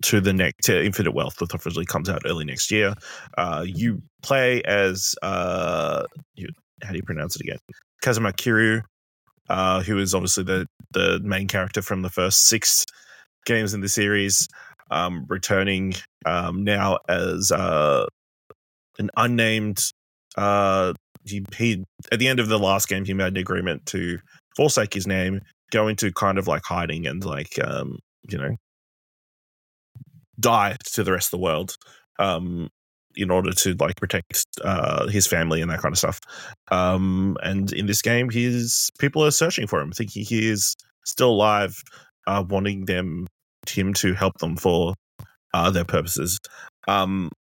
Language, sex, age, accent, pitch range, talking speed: English, male, 20-39, Australian, 90-115 Hz, 160 wpm